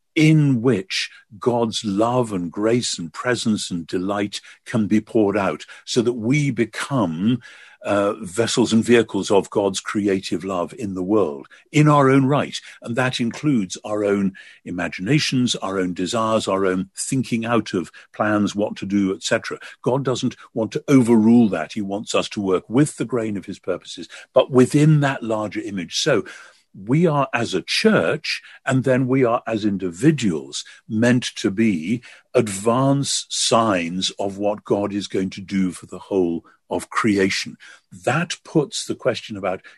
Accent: British